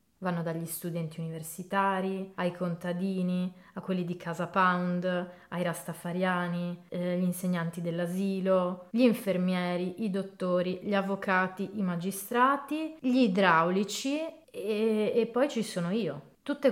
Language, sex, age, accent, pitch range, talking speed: Italian, female, 30-49, native, 175-210 Hz, 120 wpm